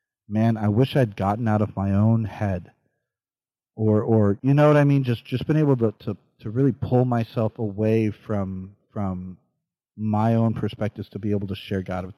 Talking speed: 195 wpm